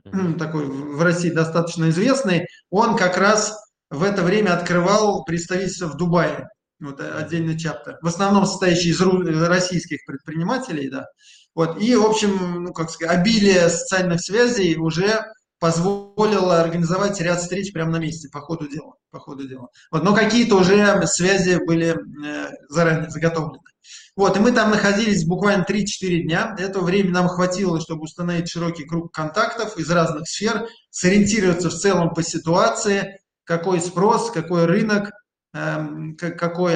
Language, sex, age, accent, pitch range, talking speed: Russian, male, 20-39, native, 165-195 Hz, 140 wpm